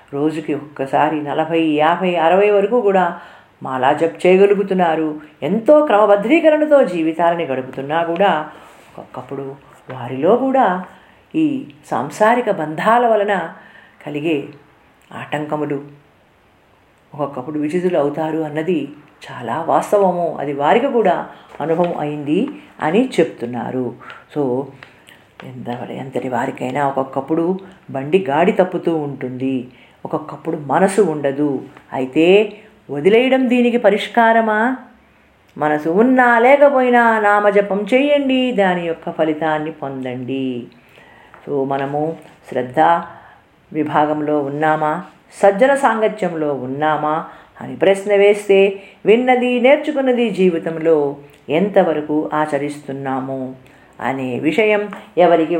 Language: Telugu